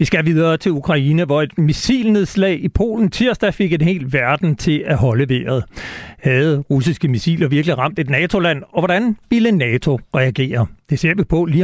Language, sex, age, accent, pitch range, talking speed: Danish, male, 60-79, native, 145-190 Hz, 185 wpm